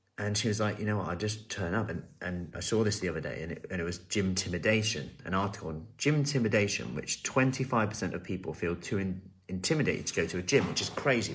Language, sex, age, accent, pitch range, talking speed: English, male, 30-49, British, 90-110 Hz, 255 wpm